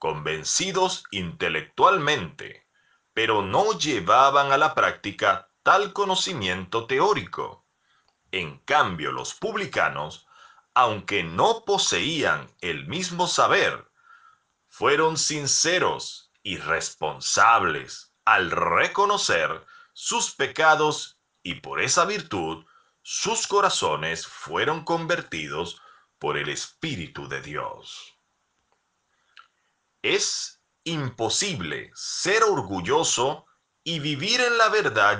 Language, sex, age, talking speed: Spanish, male, 40-59, 85 wpm